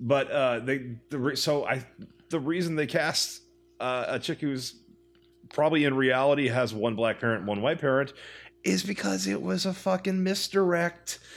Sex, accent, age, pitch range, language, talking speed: male, American, 30-49, 125-175 Hz, English, 175 wpm